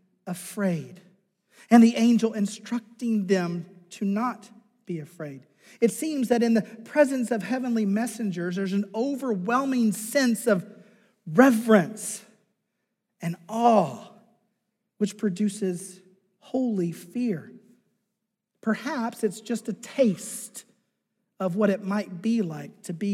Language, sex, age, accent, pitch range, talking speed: English, male, 40-59, American, 200-240 Hz, 115 wpm